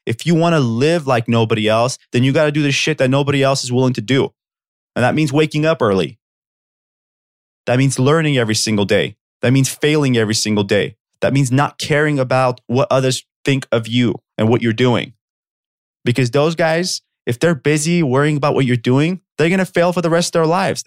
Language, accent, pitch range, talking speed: English, American, 115-150 Hz, 215 wpm